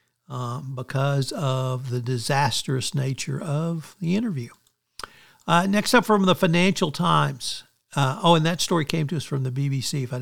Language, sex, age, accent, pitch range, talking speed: English, male, 60-79, American, 130-170 Hz, 170 wpm